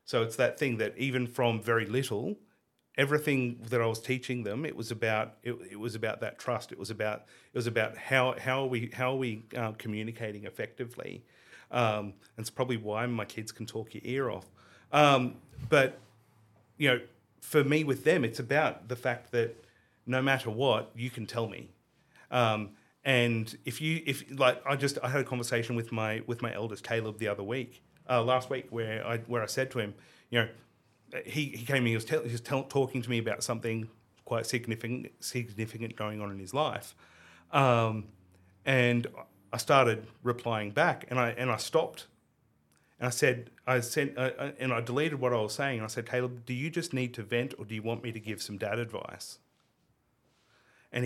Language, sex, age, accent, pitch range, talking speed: English, male, 30-49, Australian, 110-130 Hz, 205 wpm